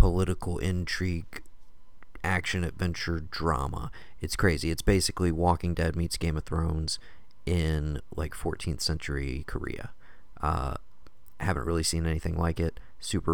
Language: English